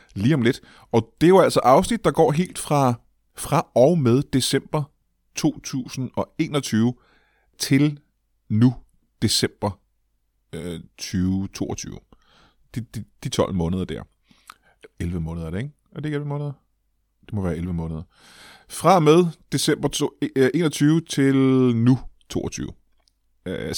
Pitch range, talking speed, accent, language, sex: 100-140 Hz, 130 wpm, native, Danish, male